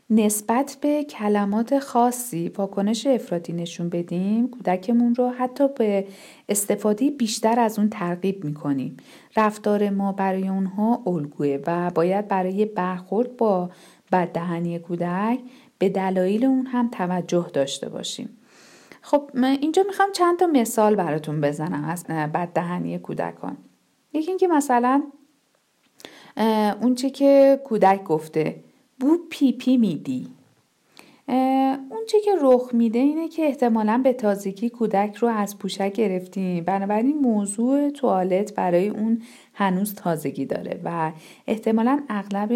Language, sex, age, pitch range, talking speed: Persian, female, 50-69, 185-255 Hz, 125 wpm